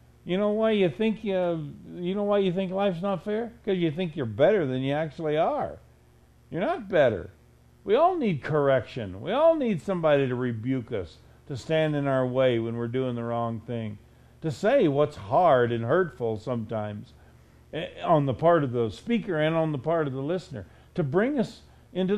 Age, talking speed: 50-69, 195 wpm